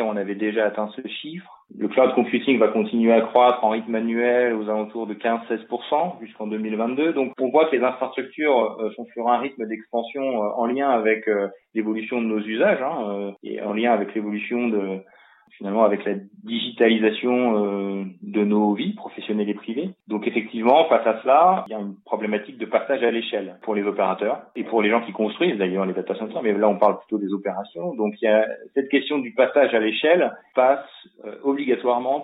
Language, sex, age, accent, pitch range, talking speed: French, male, 20-39, French, 105-120 Hz, 195 wpm